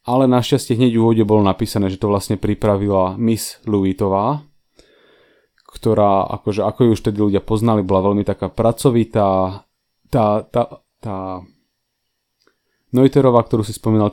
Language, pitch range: English, 95-120 Hz